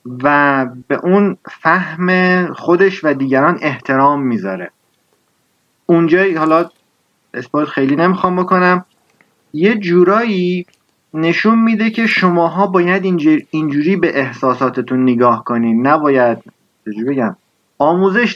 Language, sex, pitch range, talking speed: Persian, male, 135-180 Hz, 95 wpm